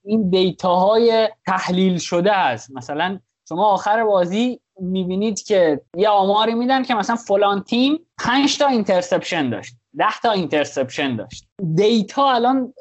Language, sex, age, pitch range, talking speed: Persian, male, 20-39, 160-225 Hz, 125 wpm